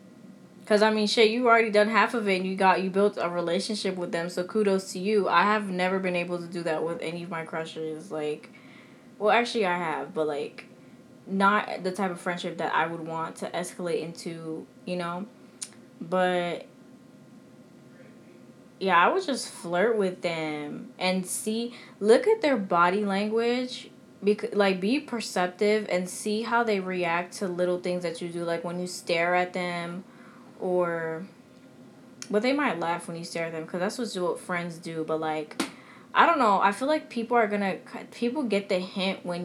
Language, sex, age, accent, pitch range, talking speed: English, female, 10-29, American, 175-240 Hz, 190 wpm